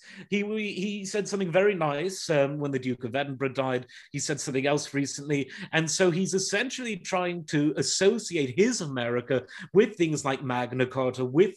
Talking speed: 170 wpm